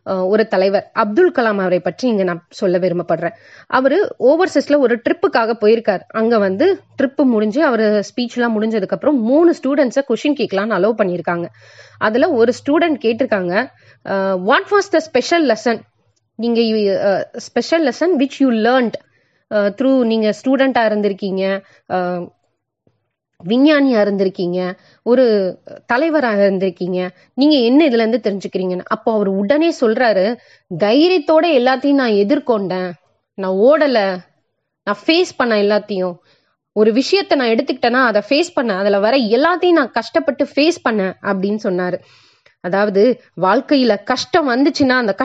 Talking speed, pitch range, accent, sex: 125 wpm, 195-280 Hz, native, female